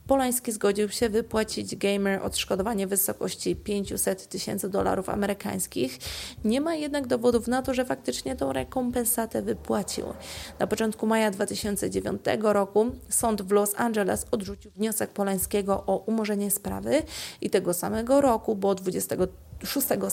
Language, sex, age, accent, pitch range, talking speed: Polish, female, 30-49, native, 195-230 Hz, 130 wpm